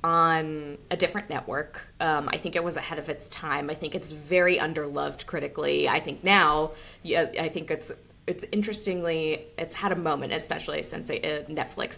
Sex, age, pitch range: female, 20-39, 150-180 Hz